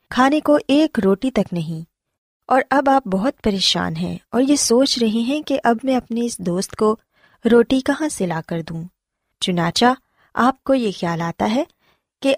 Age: 20-39